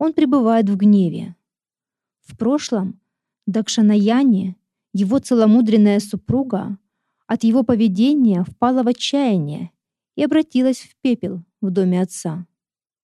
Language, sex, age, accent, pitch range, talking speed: Russian, female, 30-49, native, 200-245 Hz, 105 wpm